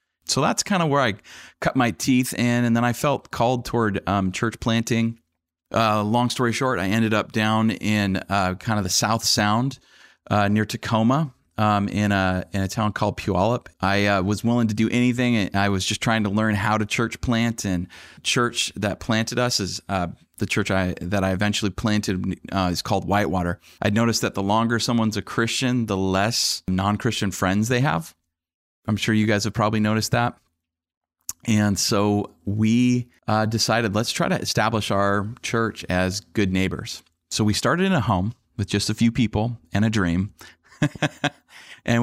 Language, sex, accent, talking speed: English, male, American, 190 wpm